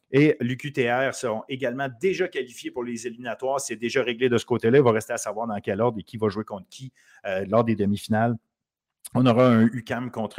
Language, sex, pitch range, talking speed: French, male, 120-155 Hz, 220 wpm